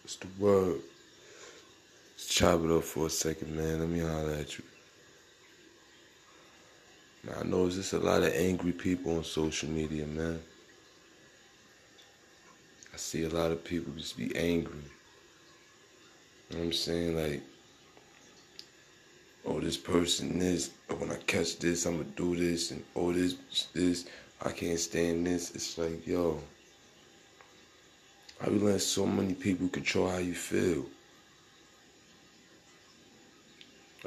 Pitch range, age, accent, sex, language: 80-90 Hz, 20-39, American, male, Japanese